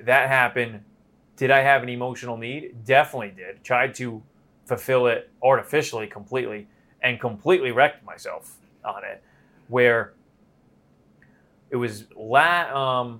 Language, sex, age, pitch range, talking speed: English, male, 30-49, 110-140 Hz, 125 wpm